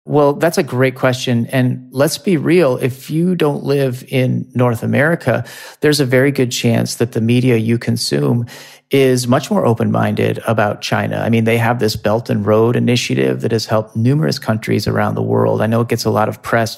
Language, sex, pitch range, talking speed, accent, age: English, male, 115-135 Hz, 205 wpm, American, 30-49